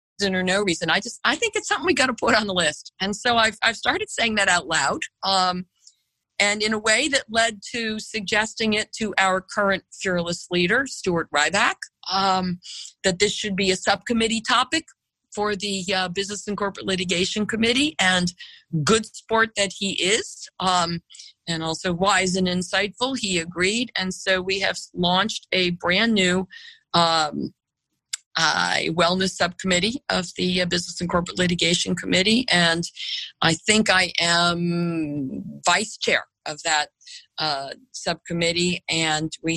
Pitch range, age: 170-210 Hz, 50-69